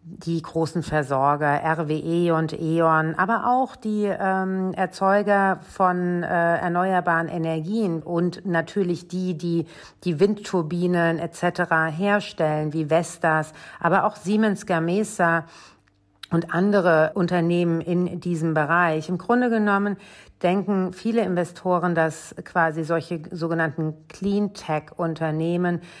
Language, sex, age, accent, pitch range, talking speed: German, female, 50-69, German, 160-180 Hz, 105 wpm